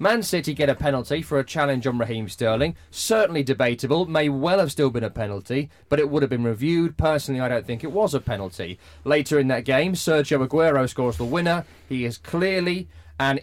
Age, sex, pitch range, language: 30-49, male, 125-160 Hz, English